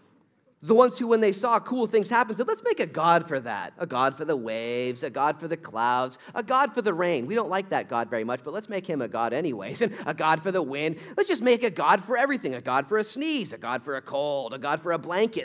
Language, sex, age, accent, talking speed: English, male, 30-49, American, 285 wpm